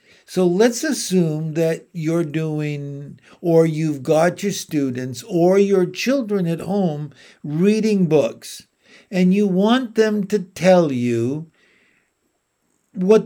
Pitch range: 145-185 Hz